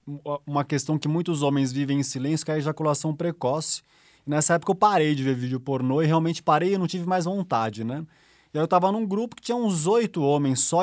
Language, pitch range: Portuguese, 135-170 Hz